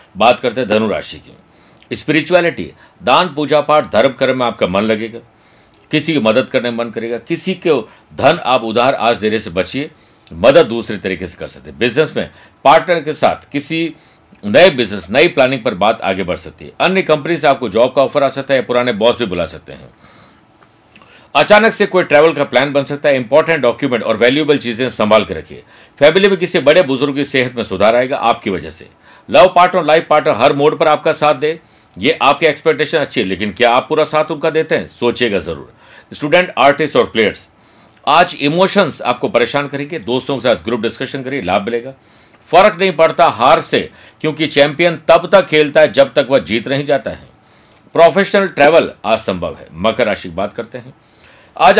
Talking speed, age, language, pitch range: 200 wpm, 60-79, Hindi, 115-155 Hz